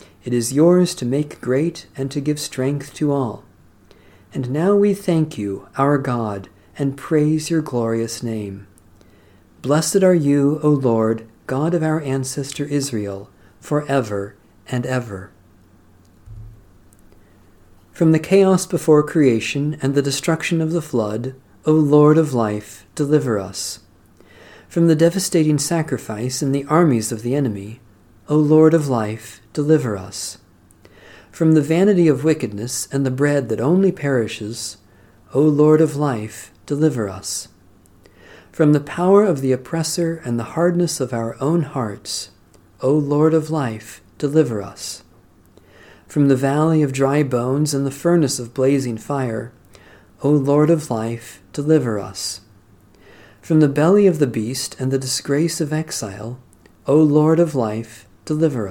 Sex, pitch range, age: male, 105-150 Hz, 50-69